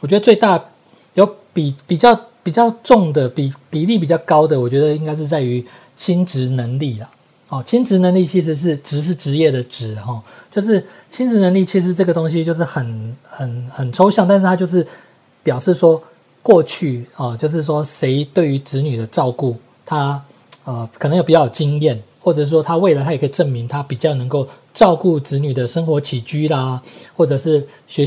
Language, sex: Chinese, male